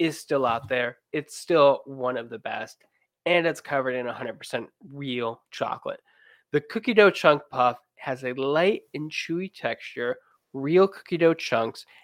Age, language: 20-39, English